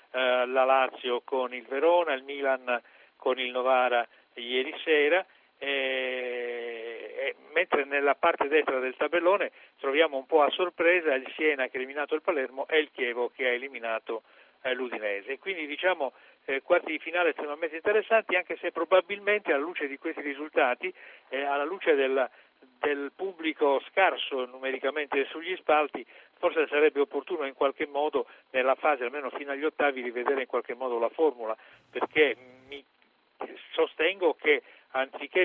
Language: Italian